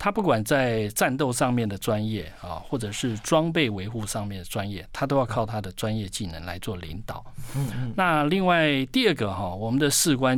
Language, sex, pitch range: Chinese, male, 105-140 Hz